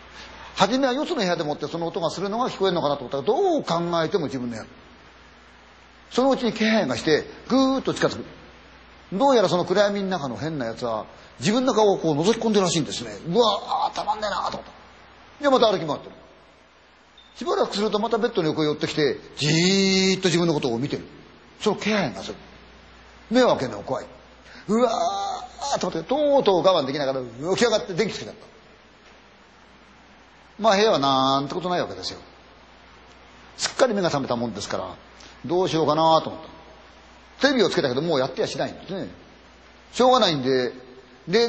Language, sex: Chinese, male